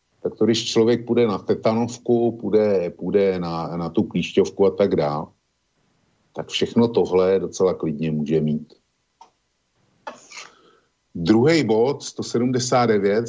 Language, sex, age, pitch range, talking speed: Slovak, male, 50-69, 90-115 Hz, 115 wpm